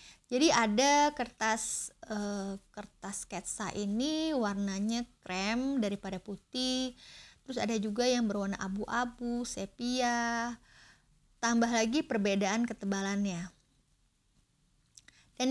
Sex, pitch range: female, 200-250 Hz